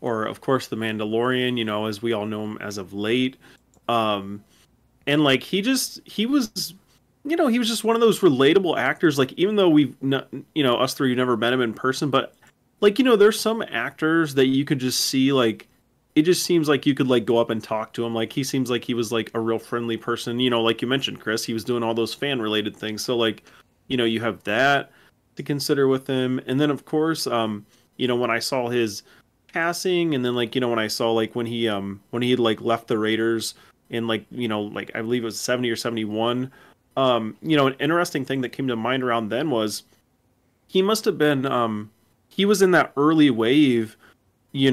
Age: 30-49